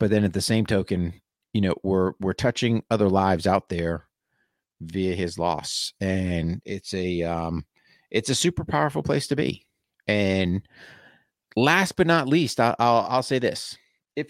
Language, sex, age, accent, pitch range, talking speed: English, male, 40-59, American, 90-120 Hz, 165 wpm